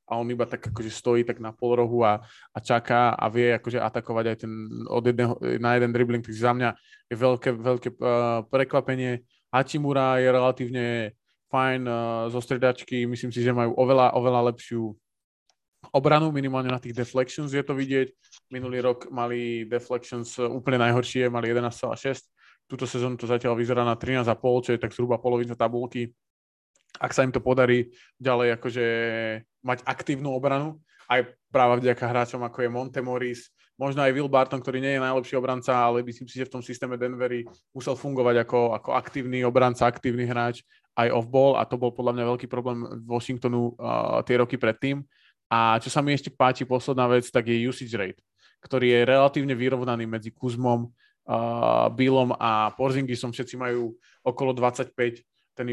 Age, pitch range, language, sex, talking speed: 20-39, 120-130 Hz, Slovak, male, 170 wpm